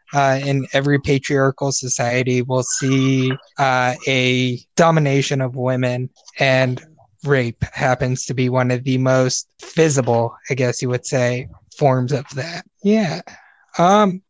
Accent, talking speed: American, 135 wpm